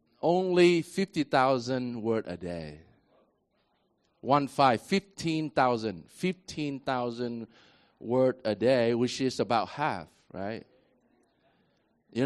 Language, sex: English, male